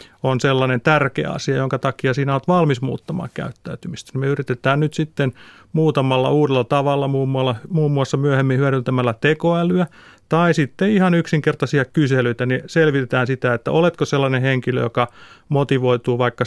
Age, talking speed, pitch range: 30-49, 140 wpm, 130-150 Hz